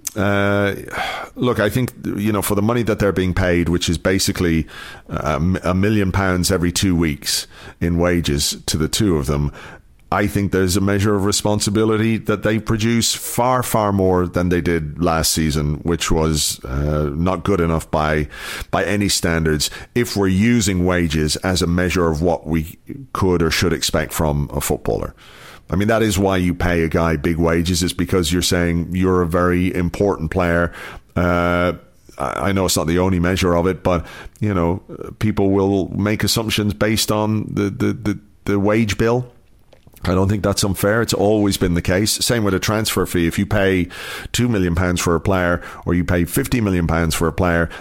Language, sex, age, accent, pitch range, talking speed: English, male, 40-59, British, 85-100 Hz, 190 wpm